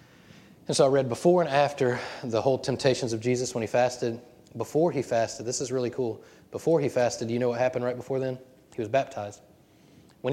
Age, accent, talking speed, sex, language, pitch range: 20-39, American, 210 wpm, male, English, 115-135 Hz